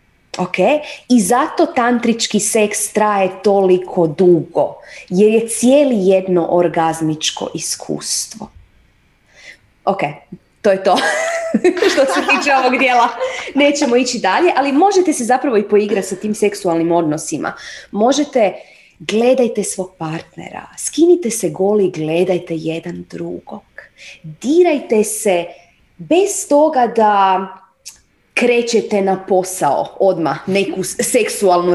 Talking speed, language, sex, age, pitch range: 110 wpm, Croatian, female, 20-39, 180-255 Hz